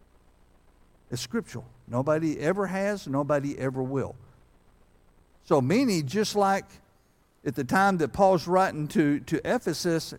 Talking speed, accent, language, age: 125 wpm, American, English, 60-79